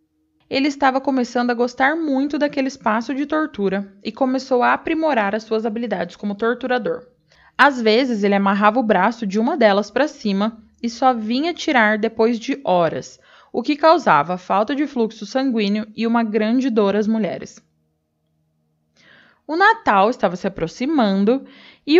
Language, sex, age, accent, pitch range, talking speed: Portuguese, female, 20-39, Brazilian, 220-270 Hz, 155 wpm